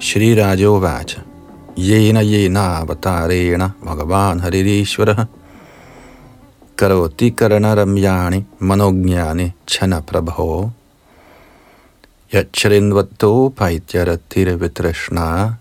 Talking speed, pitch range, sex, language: 75 wpm, 90-115 Hz, male, Danish